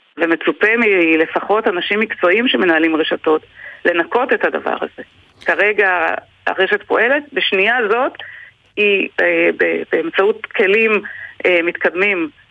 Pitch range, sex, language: 180-295 Hz, female, Hebrew